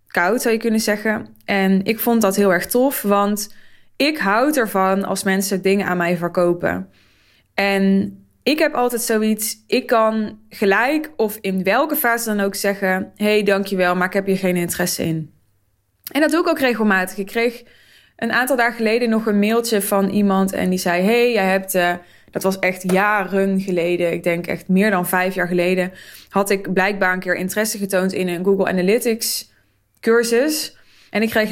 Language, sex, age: Dutch, female, 20-39